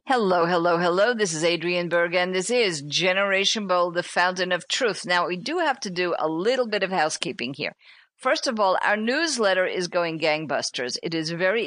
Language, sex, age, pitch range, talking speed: English, female, 50-69, 160-205 Hz, 200 wpm